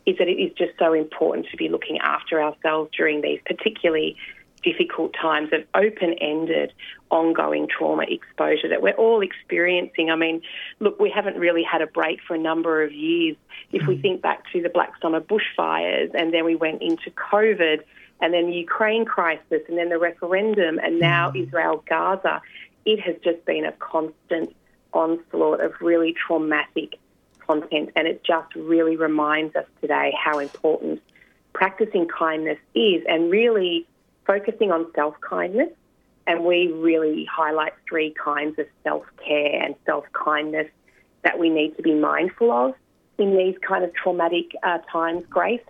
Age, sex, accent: 30-49, female, Australian